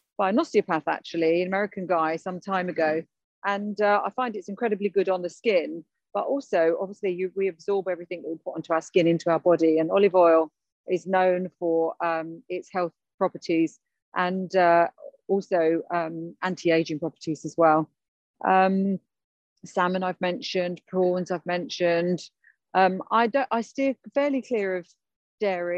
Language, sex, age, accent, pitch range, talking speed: English, female, 40-59, British, 175-200 Hz, 165 wpm